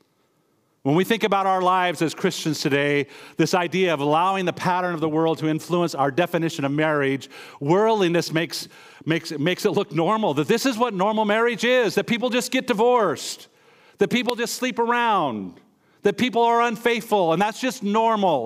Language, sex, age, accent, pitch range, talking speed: English, male, 50-69, American, 130-180 Hz, 180 wpm